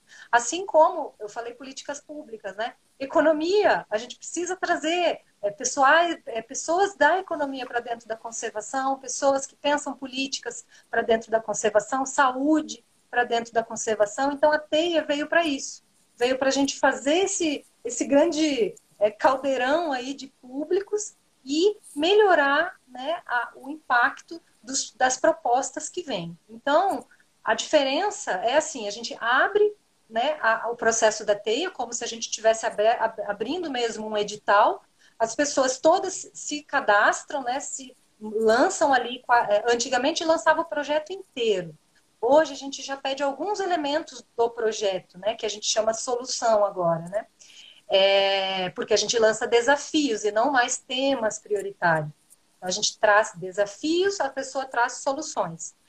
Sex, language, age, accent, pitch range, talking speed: female, Portuguese, 30-49, Brazilian, 225-310 Hz, 145 wpm